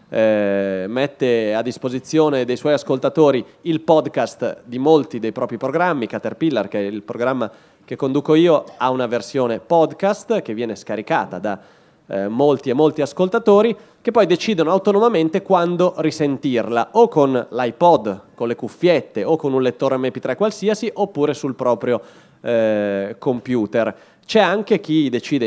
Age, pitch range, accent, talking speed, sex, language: 30-49, 120-175 Hz, native, 145 wpm, male, Italian